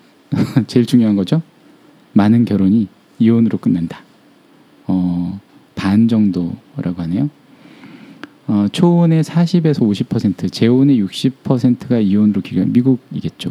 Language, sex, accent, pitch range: Korean, male, native, 100-145 Hz